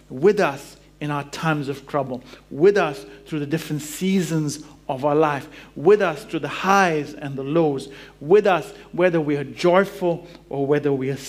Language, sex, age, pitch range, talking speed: English, male, 50-69, 145-190 Hz, 180 wpm